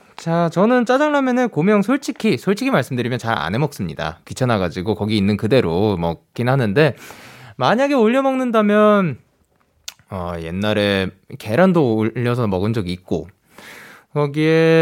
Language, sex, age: Korean, male, 20-39